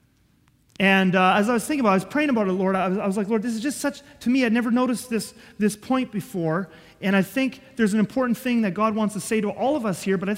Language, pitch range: English, 165-215 Hz